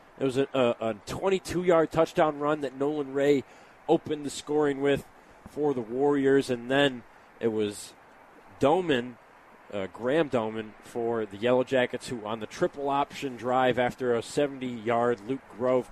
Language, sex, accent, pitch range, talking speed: English, male, American, 115-145 Hz, 150 wpm